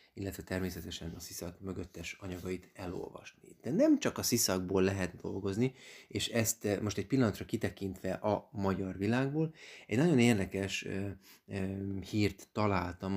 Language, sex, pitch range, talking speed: Hungarian, male, 95-105 Hz, 130 wpm